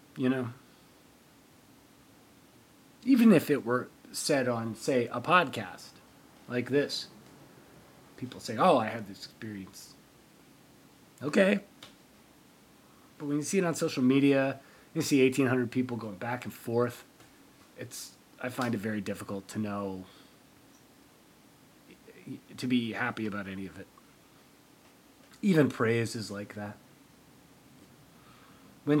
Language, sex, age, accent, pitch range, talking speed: English, male, 30-49, American, 105-130 Hz, 120 wpm